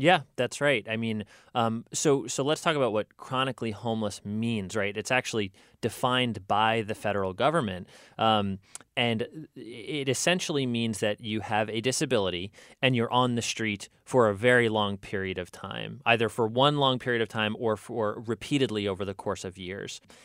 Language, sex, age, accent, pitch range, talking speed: English, male, 30-49, American, 105-130 Hz, 180 wpm